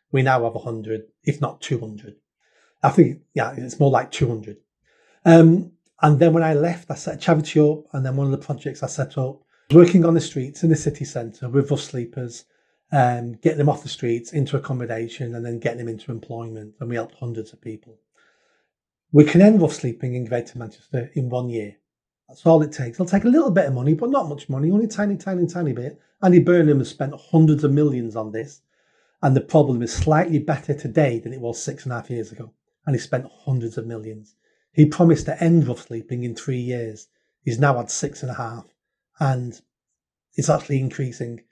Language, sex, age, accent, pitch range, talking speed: English, male, 30-49, British, 120-155 Hz, 210 wpm